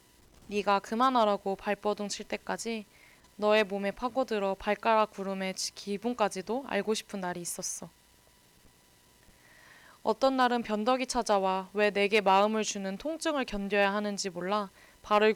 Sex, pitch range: female, 190-220 Hz